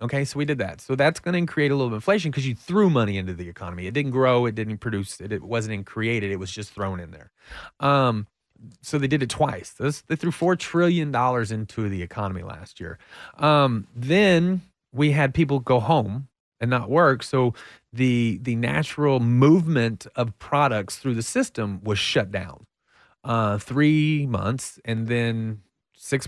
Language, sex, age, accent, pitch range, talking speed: English, male, 30-49, American, 110-145 Hz, 190 wpm